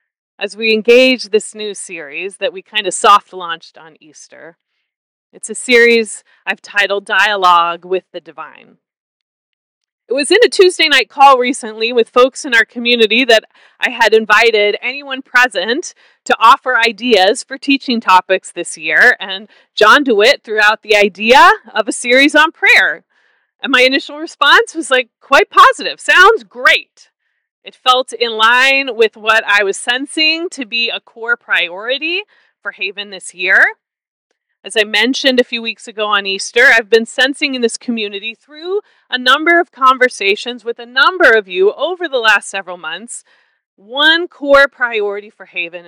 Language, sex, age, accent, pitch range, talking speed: English, female, 30-49, American, 205-280 Hz, 160 wpm